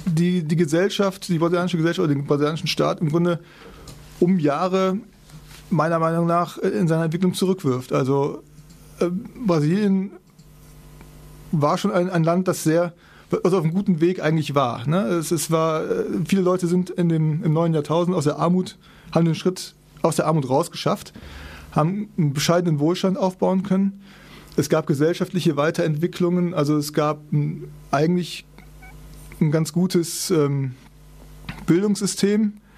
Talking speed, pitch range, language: 150 wpm, 155-185 Hz, German